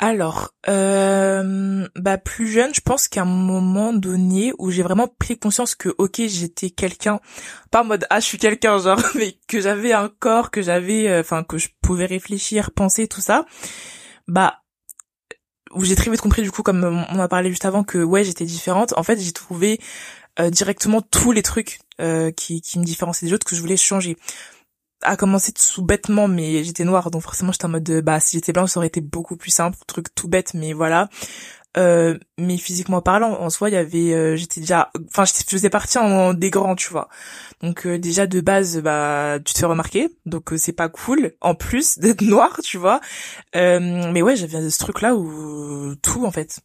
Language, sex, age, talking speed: French, female, 20-39, 210 wpm